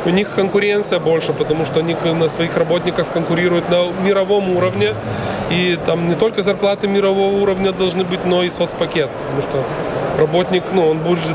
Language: Russian